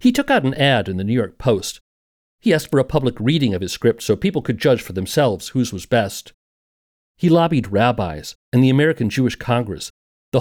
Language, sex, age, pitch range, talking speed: English, male, 50-69, 95-145 Hz, 215 wpm